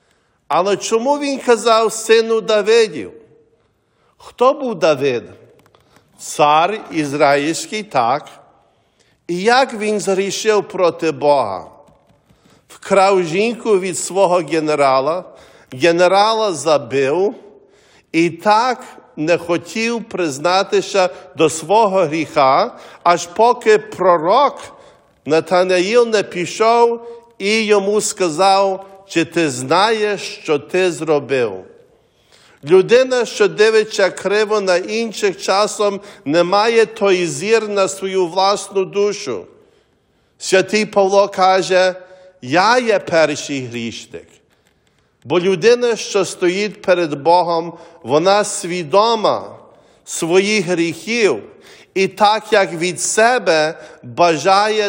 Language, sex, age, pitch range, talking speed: English, male, 50-69, 165-215 Hz, 95 wpm